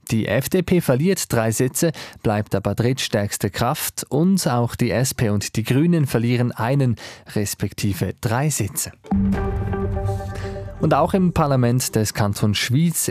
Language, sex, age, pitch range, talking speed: German, male, 20-39, 105-135 Hz, 130 wpm